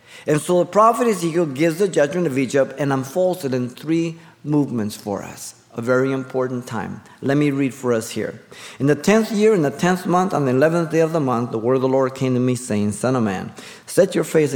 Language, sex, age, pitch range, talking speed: English, male, 50-69, 115-150 Hz, 240 wpm